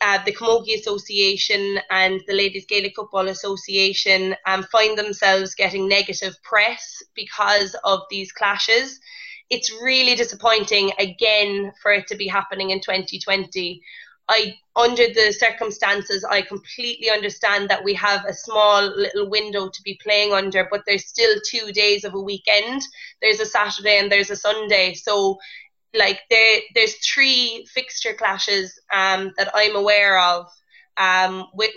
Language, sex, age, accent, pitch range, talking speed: English, female, 20-39, Irish, 195-215 Hz, 145 wpm